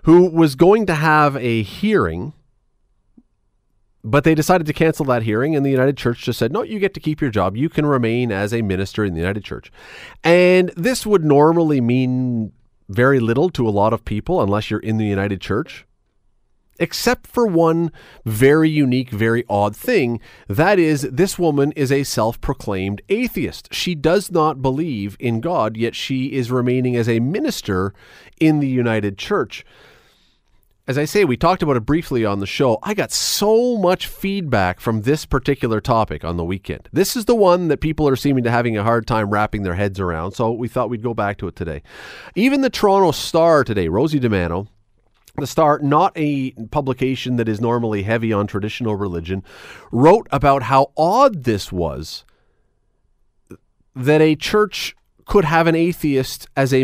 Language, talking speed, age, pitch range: English, 180 wpm, 40-59, 110-155 Hz